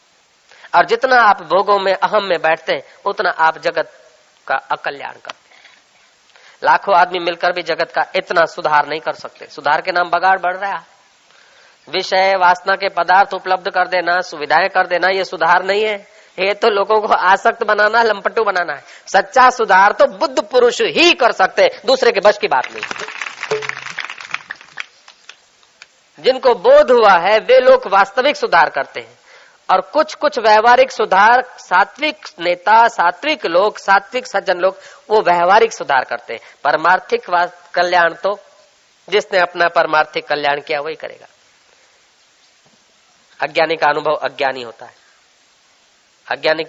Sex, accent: female, native